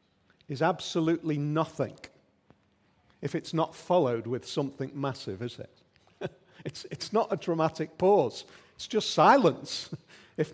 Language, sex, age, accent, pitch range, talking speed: English, male, 40-59, British, 155-220 Hz, 125 wpm